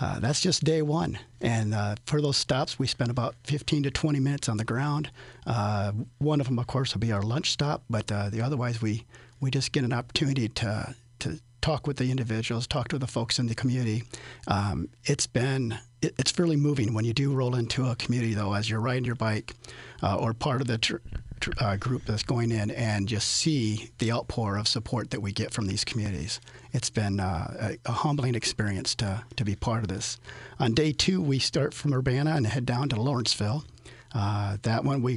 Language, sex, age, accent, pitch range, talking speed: English, male, 40-59, American, 110-135 Hz, 220 wpm